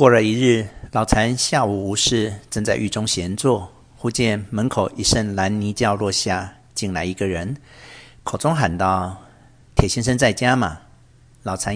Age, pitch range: 50-69, 100-130 Hz